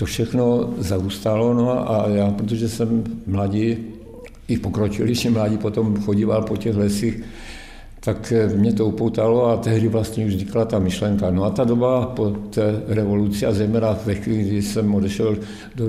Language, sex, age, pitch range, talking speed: Czech, male, 60-79, 100-110 Hz, 160 wpm